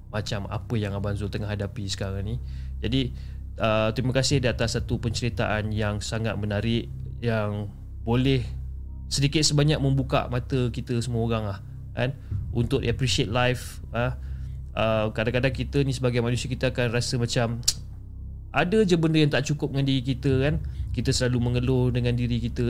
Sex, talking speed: male, 160 wpm